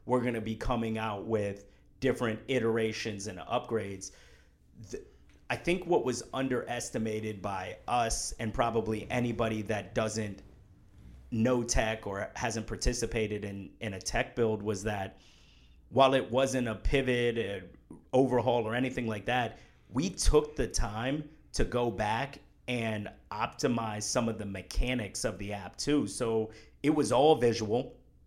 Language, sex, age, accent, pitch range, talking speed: English, male, 30-49, American, 105-125 Hz, 140 wpm